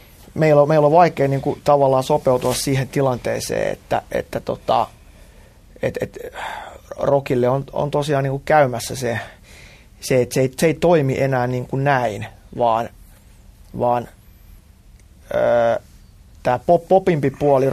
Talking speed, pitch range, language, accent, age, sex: 130 wpm, 115-145 Hz, Finnish, native, 30-49, male